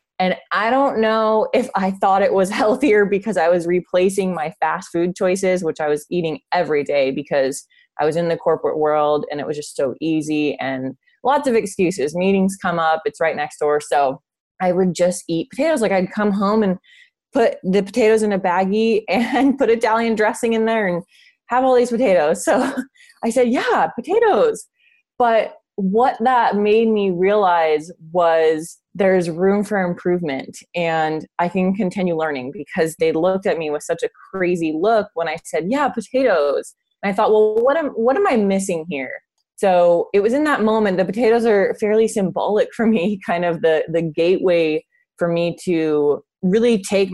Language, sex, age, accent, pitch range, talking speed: English, female, 20-39, American, 160-225 Hz, 185 wpm